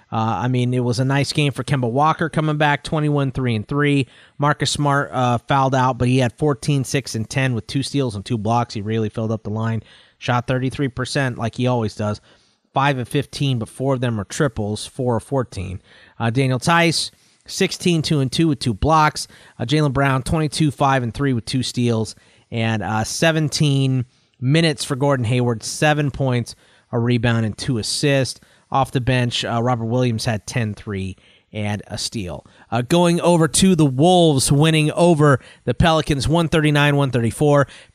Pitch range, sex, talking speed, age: 120-145 Hz, male, 155 wpm, 30-49